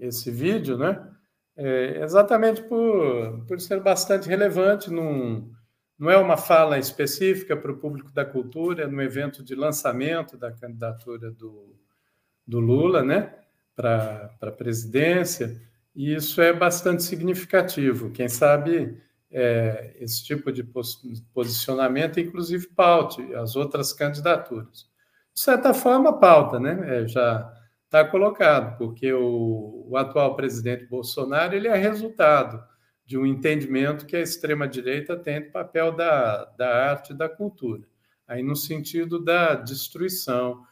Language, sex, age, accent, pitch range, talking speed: Portuguese, male, 50-69, Brazilian, 120-160 Hz, 135 wpm